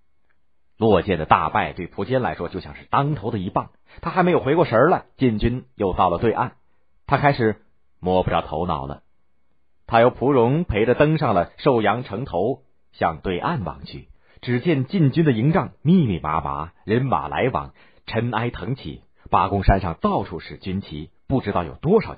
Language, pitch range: Chinese, 75-125 Hz